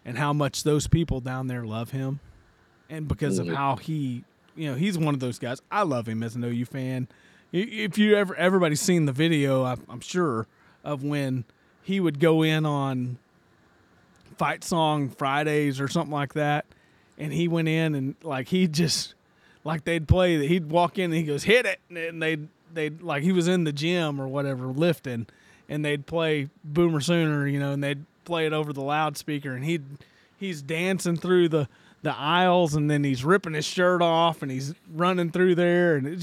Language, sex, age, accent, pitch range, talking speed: English, male, 30-49, American, 140-170 Hz, 195 wpm